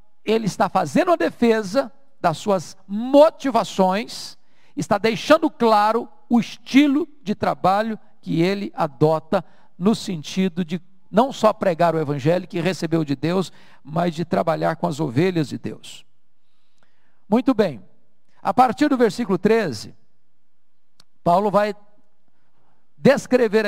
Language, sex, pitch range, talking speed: Portuguese, male, 180-235 Hz, 120 wpm